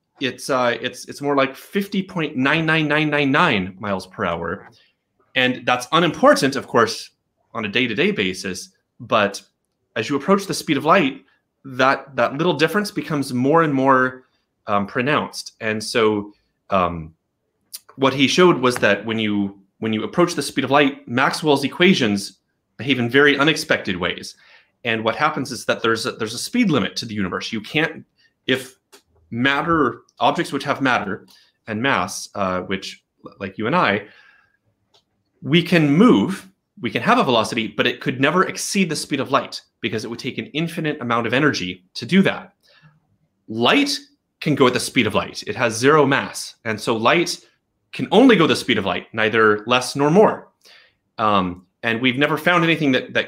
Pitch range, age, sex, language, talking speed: 110-150 Hz, 30-49, male, English, 180 wpm